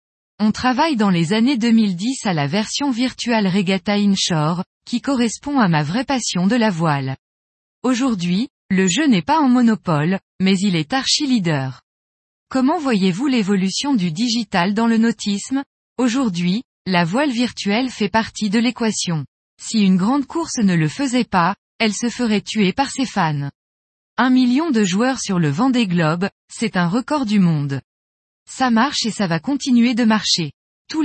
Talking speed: 165 wpm